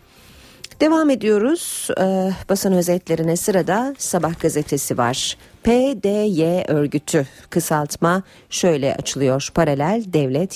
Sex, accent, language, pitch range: female, native, Turkish, 150-215 Hz